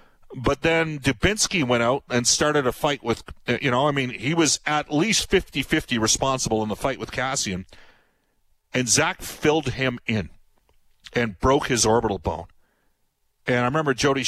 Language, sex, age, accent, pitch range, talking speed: English, male, 50-69, American, 115-150 Hz, 165 wpm